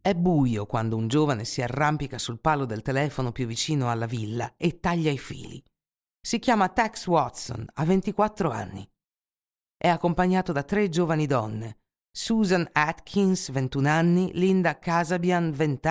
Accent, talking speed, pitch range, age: native, 145 wpm, 135-185 Hz, 50-69